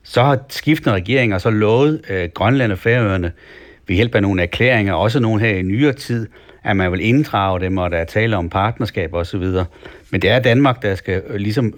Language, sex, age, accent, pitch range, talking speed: Danish, male, 60-79, native, 95-115 Hz, 210 wpm